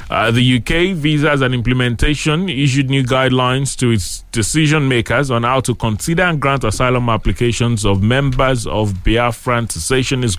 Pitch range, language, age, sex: 105-135 Hz, English, 30-49, male